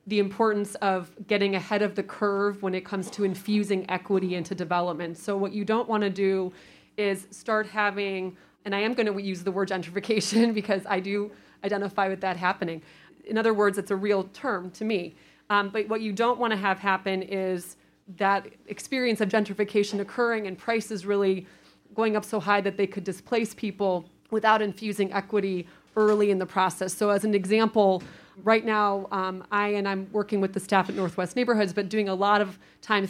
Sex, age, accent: female, 30-49, American